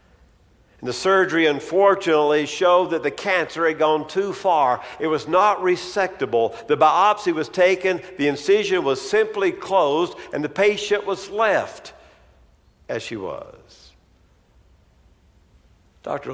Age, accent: 60-79, American